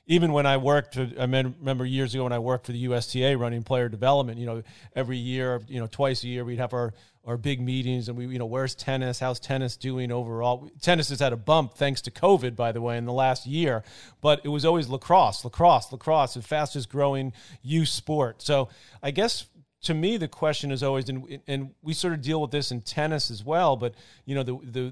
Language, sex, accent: English, male, American